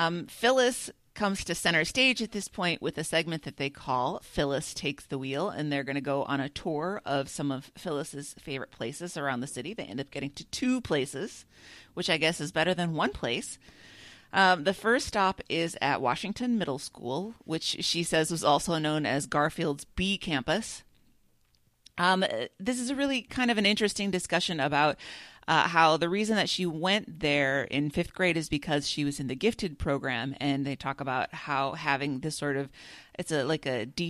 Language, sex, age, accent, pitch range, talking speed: English, female, 30-49, American, 140-175 Hz, 200 wpm